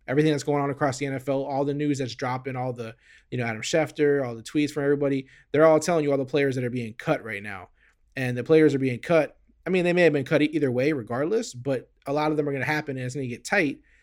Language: English